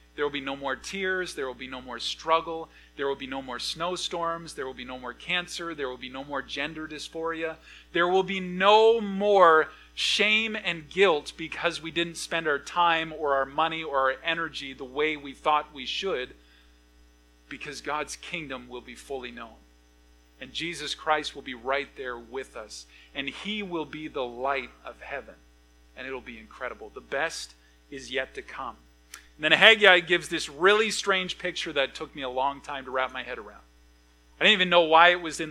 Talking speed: 200 wpm